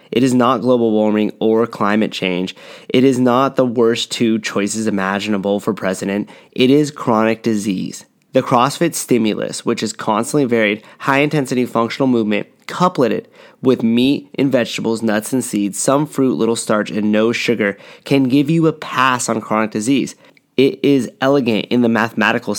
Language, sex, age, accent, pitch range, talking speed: English, male, 20-39, American, 105-125 Hz, 160 wpm